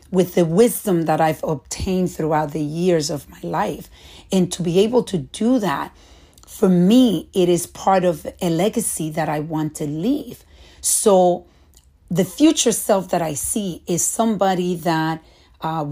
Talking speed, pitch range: 160 wpm, 160-200 Hz